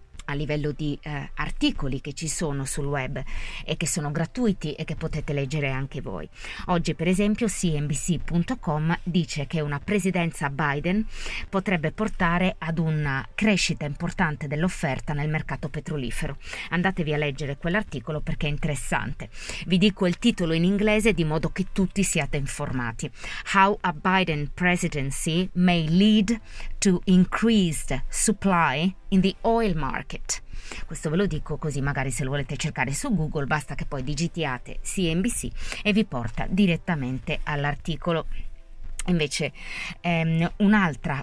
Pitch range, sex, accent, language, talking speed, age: 150-185 Hz, female, native, Italian, 140 wpm, 30-49